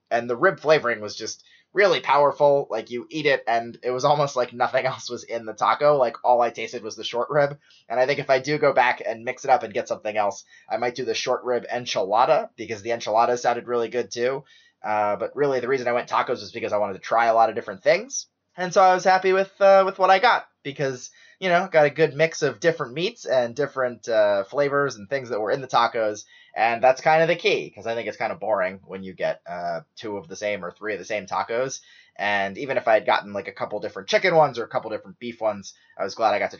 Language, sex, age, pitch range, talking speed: English, male, 20-39, 115-160 Hz, 265 wpm